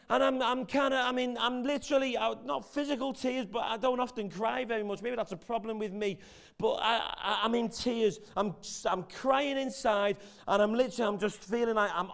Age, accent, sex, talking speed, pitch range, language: 30-49, British, male, 220 wpm, 165-210 Hz, English